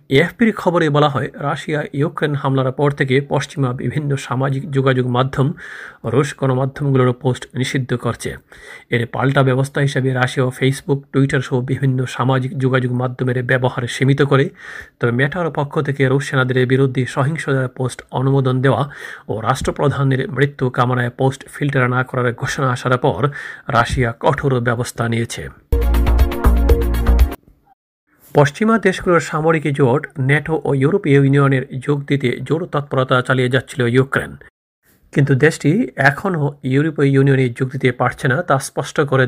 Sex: male